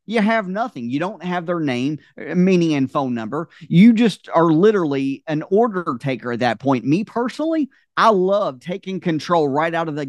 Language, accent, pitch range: English, American, 150-215 Hz